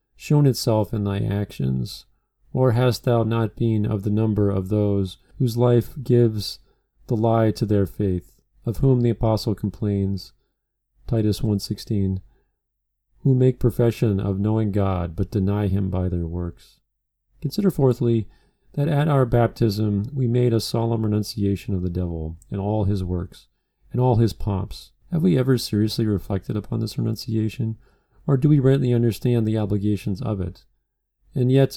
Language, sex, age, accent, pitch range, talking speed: English, male, 40-59, American, 100-125 Hz, 155 wpm